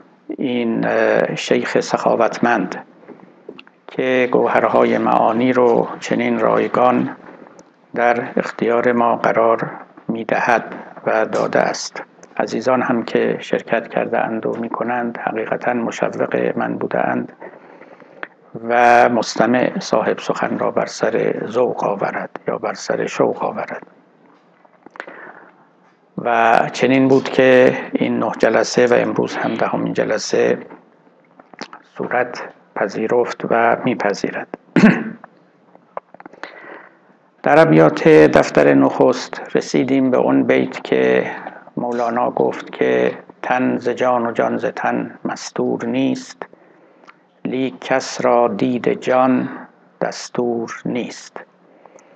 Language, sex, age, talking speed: Persian, male, 60-79, 105 wpm